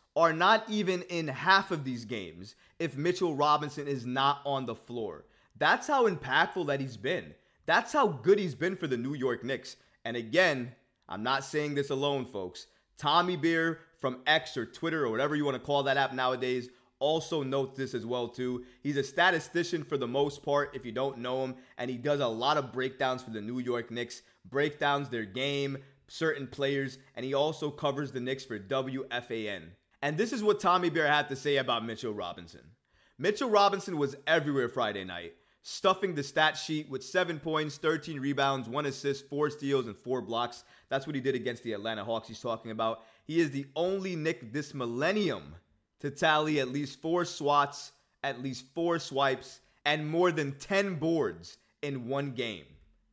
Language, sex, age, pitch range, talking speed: English, male, 20-39, 125-155 Hz, 190 wpm